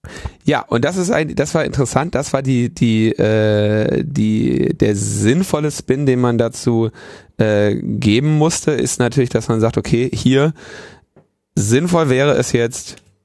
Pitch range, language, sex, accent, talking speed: 105-135 Hz, German, male, German, 155 wpm